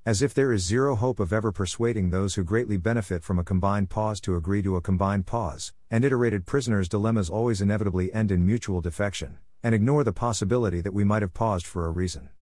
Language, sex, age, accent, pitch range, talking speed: English, male, 50-69, American, 90-115 Hz, 215 wpm